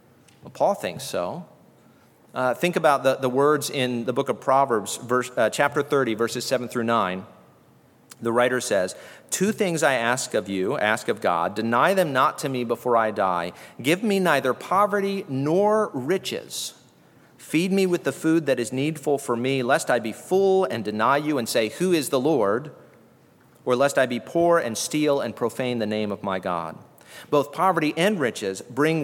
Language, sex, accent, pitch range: English, male, American, 120-160 Hz